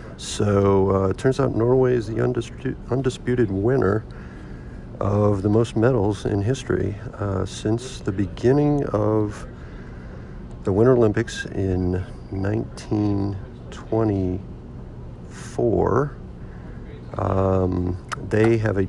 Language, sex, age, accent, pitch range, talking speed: English, male, 50-69, American, 95-115 Hz, 100 wpm